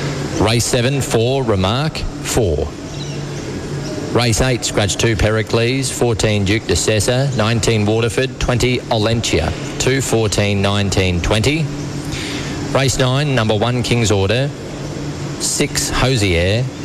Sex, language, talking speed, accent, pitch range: male, English, 105 wpm, Australian, 95-135 Hz